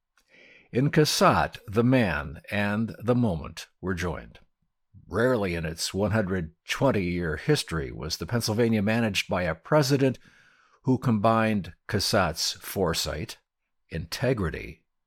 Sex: male